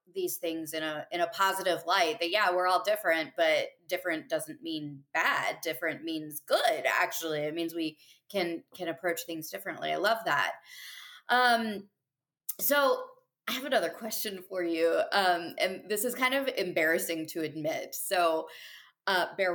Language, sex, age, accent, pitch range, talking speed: English, female, 20-39, American, 175-285 Hz, 165 wpm